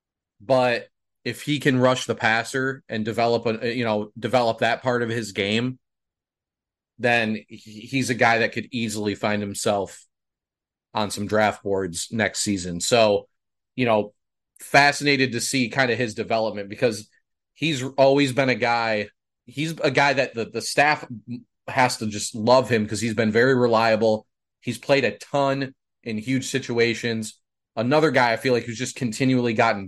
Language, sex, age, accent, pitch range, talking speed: English, male, 30-49, American, 105-130 Hz, 165 wpm